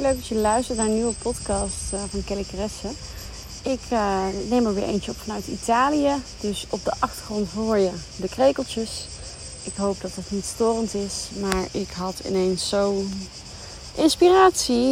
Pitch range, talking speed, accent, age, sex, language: 180-240 Hz, 165 wpm, Dutch, 30-49, female, Dutch